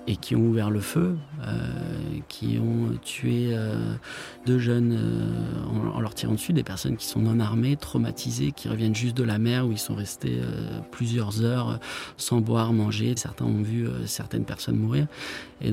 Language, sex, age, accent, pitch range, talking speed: French, male, 30-49, French, 110-135 Hz, 185 wpm